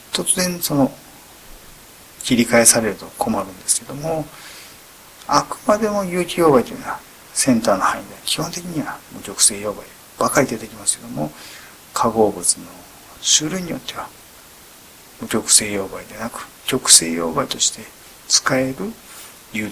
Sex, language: male, Japanese